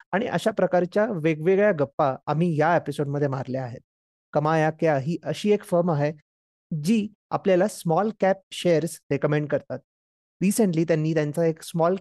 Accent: native